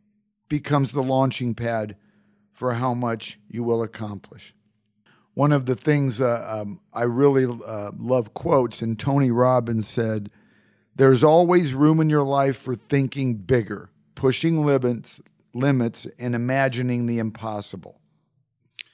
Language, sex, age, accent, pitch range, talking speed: English, male, 50-69, American, 120-155 Hz, 130 wpm